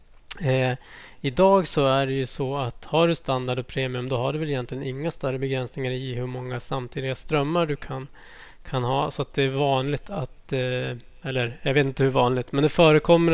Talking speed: 205 wpm